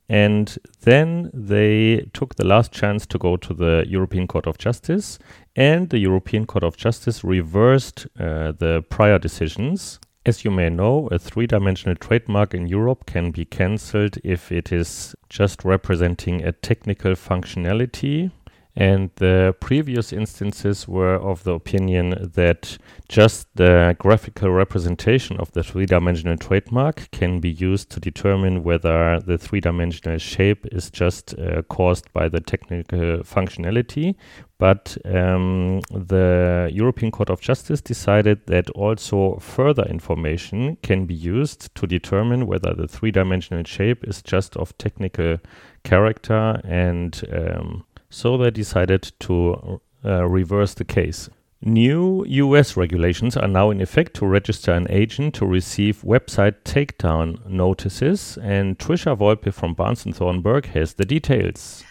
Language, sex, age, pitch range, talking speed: English, male, 30-49, 90-115 Hz, 140 wpm